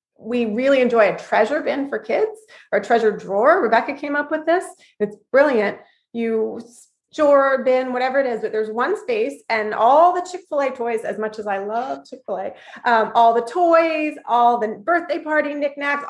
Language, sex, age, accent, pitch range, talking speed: English, female, 30-49, American, 225-295 Hz, 180 wpm